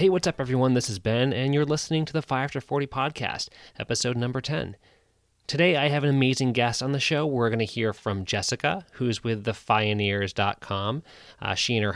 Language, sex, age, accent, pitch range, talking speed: English, male, 20-39, American, 105-130 Hz, 200 wpm